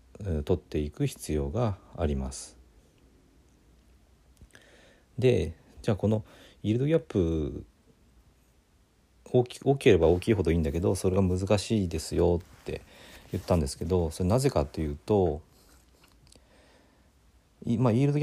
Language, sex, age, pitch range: Japanese, male, 40-59, 75-110 Hz